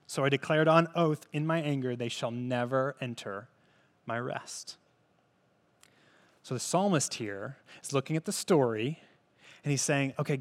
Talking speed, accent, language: 155 wpm, American, English